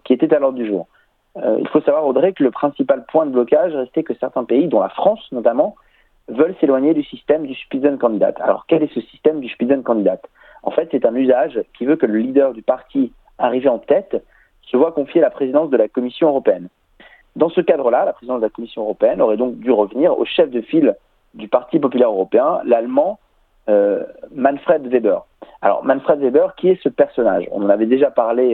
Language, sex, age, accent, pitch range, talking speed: French, male, 40-59, French, 115-160 Hz, 210 wpm